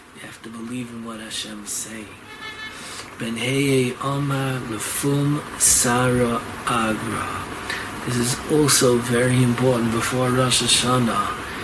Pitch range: 120-145 Hz